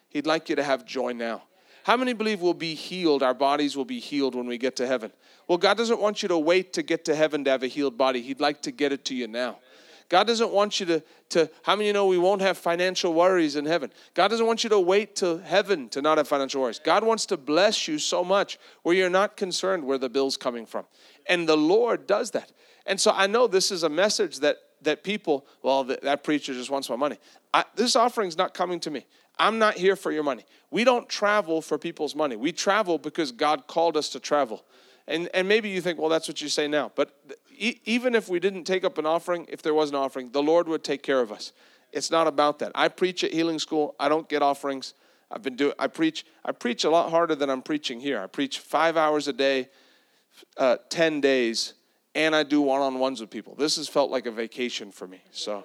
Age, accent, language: 40-59, American, English